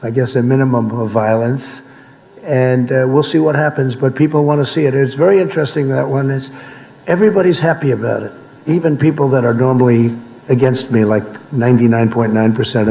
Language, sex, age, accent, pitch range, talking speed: English, male, 60-79, American, 120-140 Hz, 170 wpm